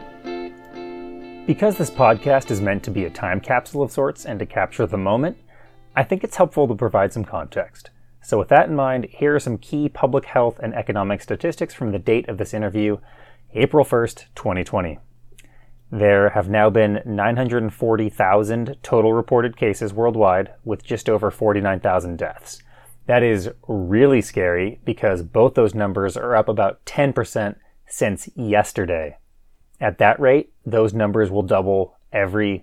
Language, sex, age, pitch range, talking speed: English, male, 30-49, 100-120 Hz, 155 wpm